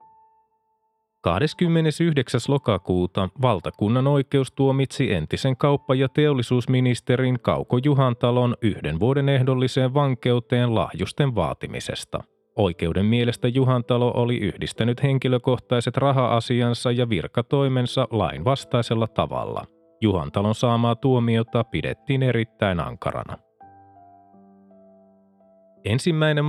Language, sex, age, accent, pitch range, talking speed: Finnish, male, 30-49, native, 110-140 Hz, 80 wpm